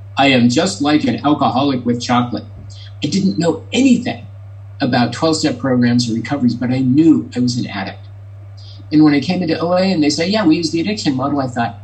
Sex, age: male, 50-69